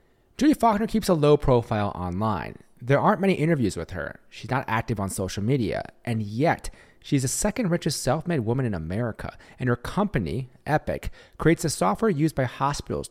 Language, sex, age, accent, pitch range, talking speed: English, male, 30-49, American, 105-145 Hz, 180 wpm